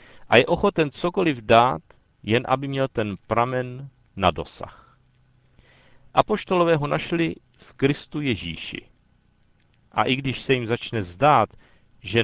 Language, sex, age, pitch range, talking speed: Czech, male, 50-69, 105-140 Hz, 125 wpm